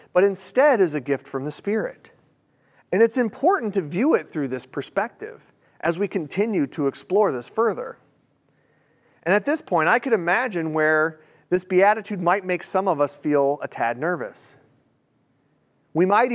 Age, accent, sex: 40-59, American, male